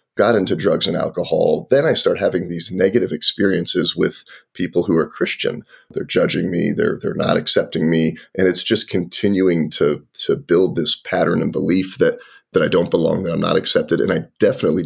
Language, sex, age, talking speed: English, male, 30-49, 195 wpm